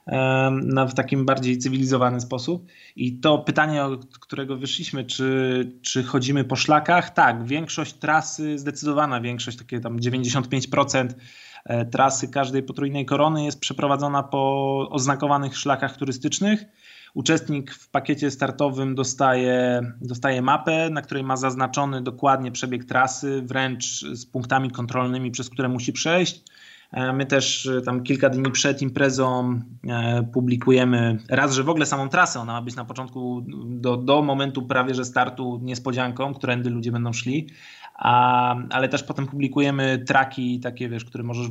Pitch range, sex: 125-140 Hz, male